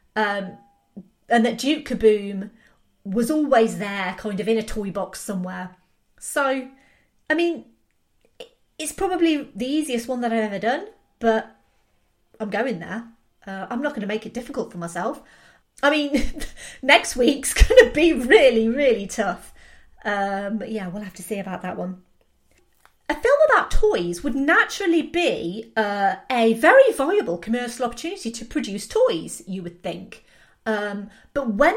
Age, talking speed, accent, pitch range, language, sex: 30-49, 155 wpm, British, 205-285 Hz, English, female